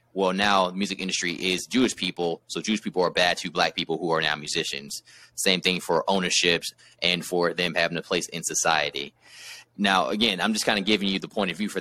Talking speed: 230 wpm